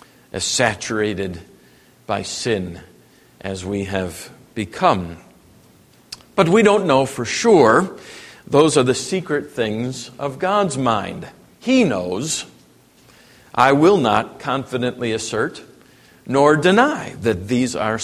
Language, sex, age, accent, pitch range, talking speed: English, male, 50-69, American, 120-180 Hz, 115 wpm